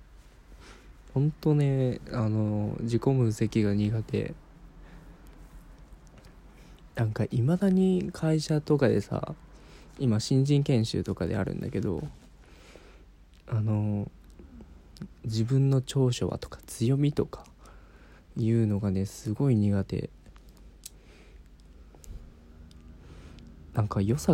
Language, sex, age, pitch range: Japanese, male, 20-39, 100-150 Hz